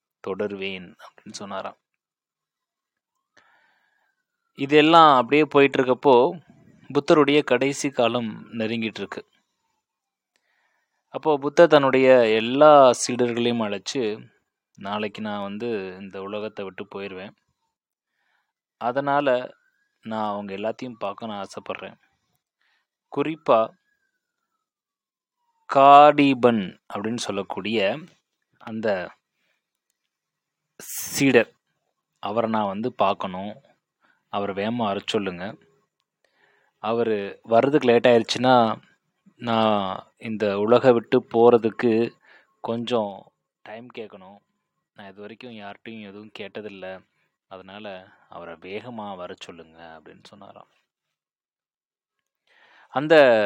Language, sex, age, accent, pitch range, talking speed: Tamil, male, 20-39, native, 105-145 Hz, 75 wpm